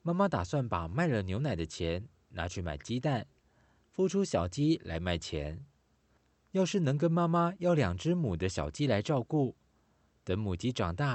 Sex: male